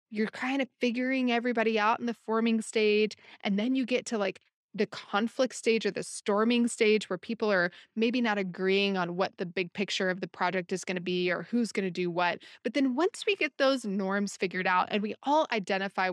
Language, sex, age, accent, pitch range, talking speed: English, female, 20-39, American, 190-245 Hz, 225 wpm